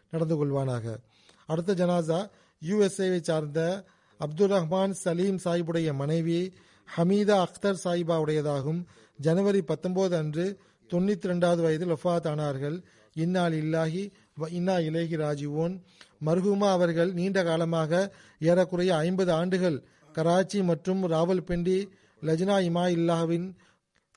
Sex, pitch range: male, 160-185 Hz